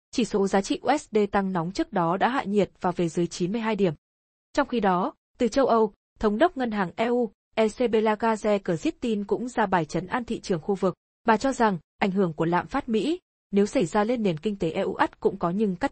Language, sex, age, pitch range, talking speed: Vietnamese, female, 20-39, 185-235 Hz, 235 wpm